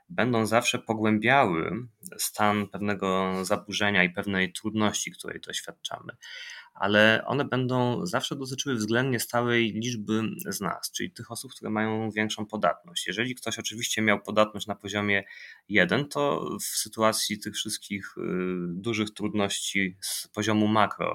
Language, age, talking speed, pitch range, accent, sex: Polish, 20-39, 130 wpm, 100-115 Hz, native, male